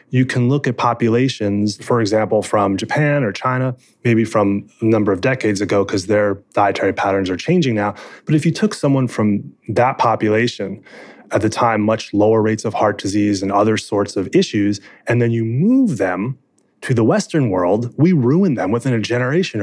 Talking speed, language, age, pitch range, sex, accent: 190 wpm, English, 30-49, 100-130 Hz, male, American